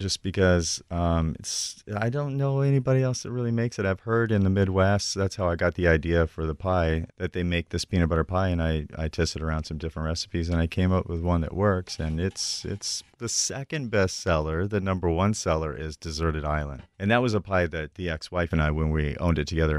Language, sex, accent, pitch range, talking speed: English, male, American, 80-95 Hz, 240 wpm